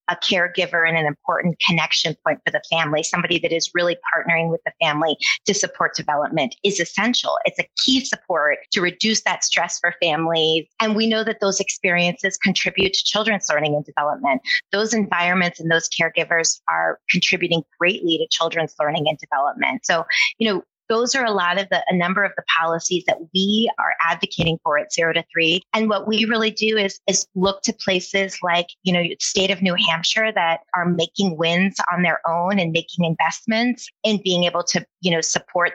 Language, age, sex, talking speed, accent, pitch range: English, 30-49, female, 195 wpm, American, 165-195 Hz